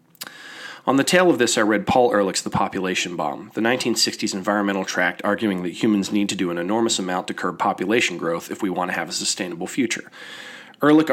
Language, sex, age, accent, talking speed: English, male, 30-49, American, 205 wpm